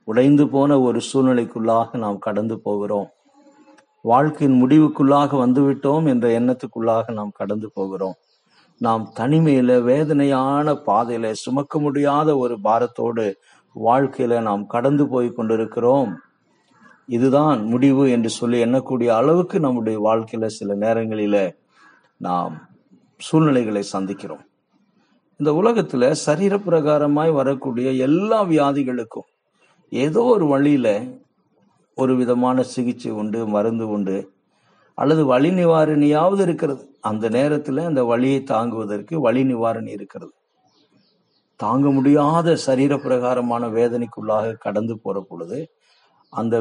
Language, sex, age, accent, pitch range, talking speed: Tamil, male, 50-69, native, 115-150 Hz, 100 wpm